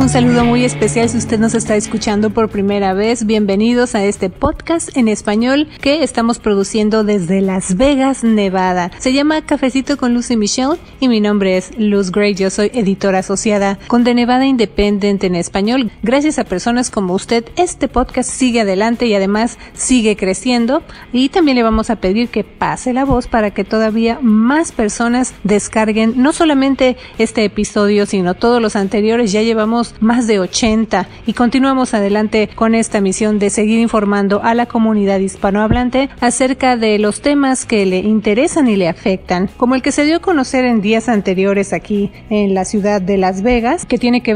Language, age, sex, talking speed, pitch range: Spanish, 40-59, female, 180 wpm, 205-245 Hz